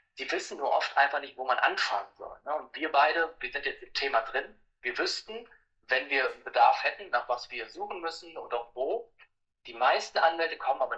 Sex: male